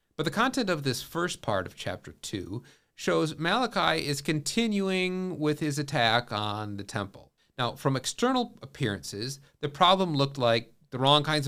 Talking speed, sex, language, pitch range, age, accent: 160 wpm, male, English, 120-170 Hz, 40-59, American